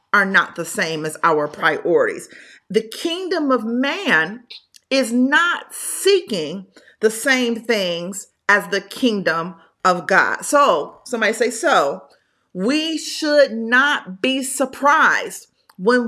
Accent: American